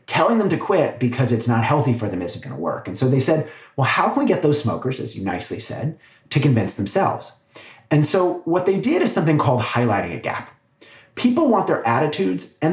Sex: male